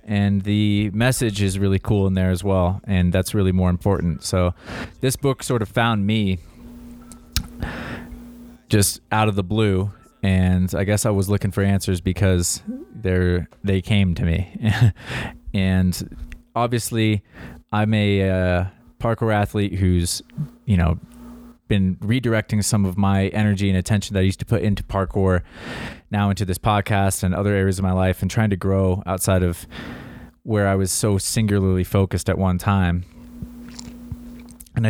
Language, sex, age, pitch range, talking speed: English, male, 20-39, 95-110 Hz, 155 wpm